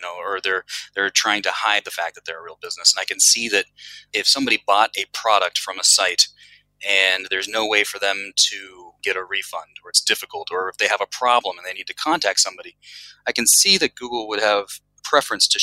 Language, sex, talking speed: English, male, 235 wpm